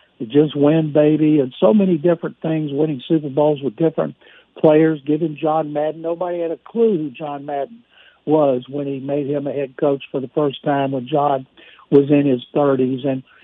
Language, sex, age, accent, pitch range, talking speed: English, male, 60-79, American, 140-170 Hz, 190 wpm